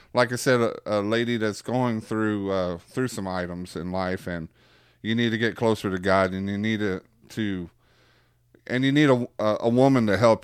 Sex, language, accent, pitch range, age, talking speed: male, English, American, 95-115 Hz, 30-49, 205 wpm